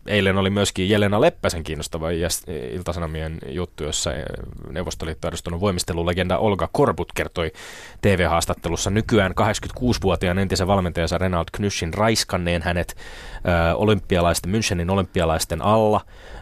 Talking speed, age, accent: 100 wpm, 20-39, native